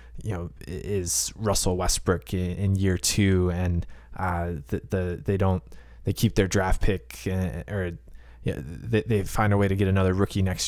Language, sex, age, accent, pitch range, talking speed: English, male, 20-39, American, 85-100 Hz, 180 wpm